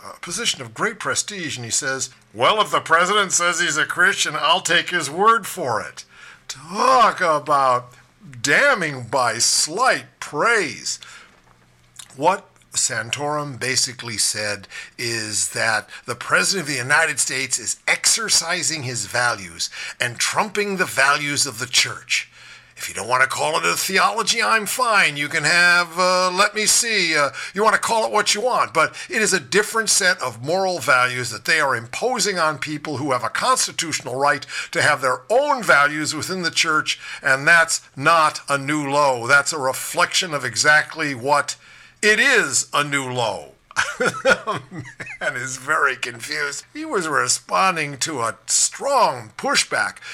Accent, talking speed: American, 160 wpm